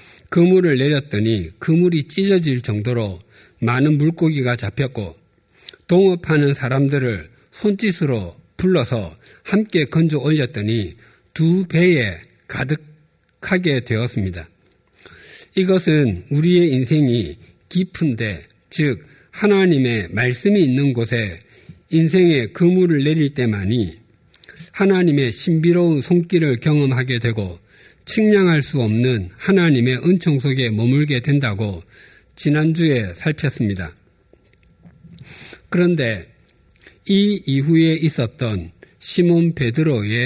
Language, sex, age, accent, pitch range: Korean, male, 50-69, native, 115-165 Hz